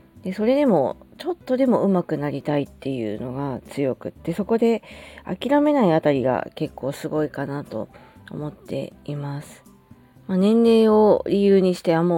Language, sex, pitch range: Japanese, female, 140-190 Hz